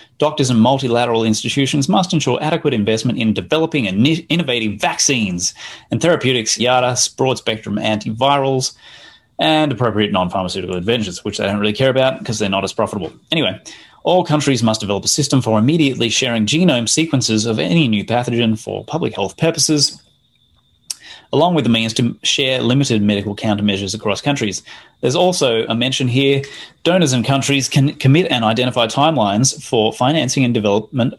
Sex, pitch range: male, 110-140 Hz